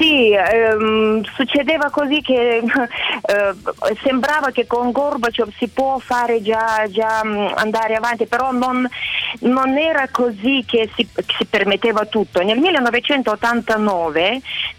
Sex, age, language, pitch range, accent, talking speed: female, 30-49, Italian, 205-260 Hz, native, 120 wpm